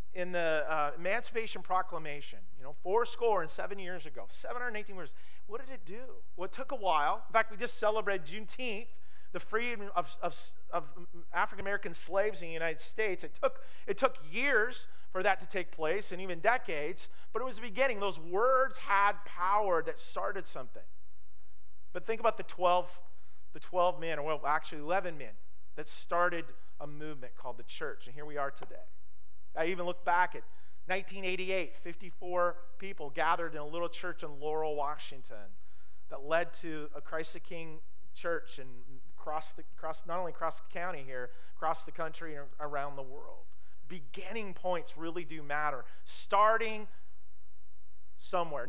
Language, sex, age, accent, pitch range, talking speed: English, male, 40-59, American, 150-200 Hz, 175 wpm